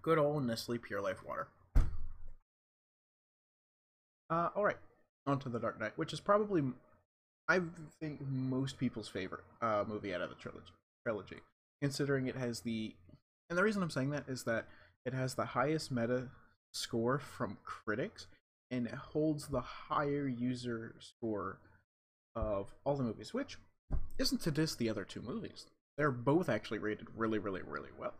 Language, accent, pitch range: English, American, 105-140 Hz